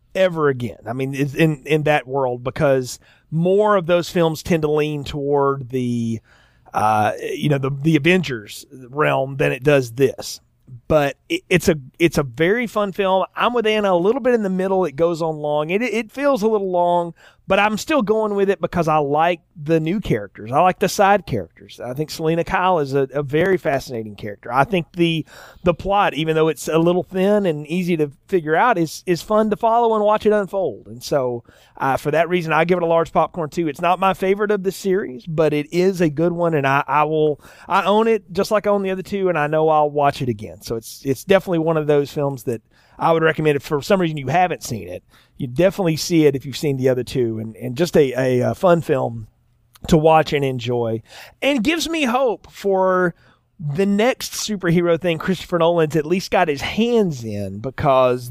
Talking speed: 225 wpm